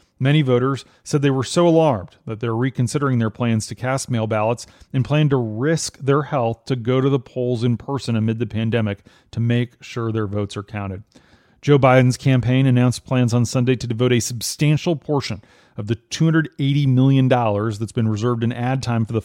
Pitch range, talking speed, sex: 110-135 Hz, 195 wpm, male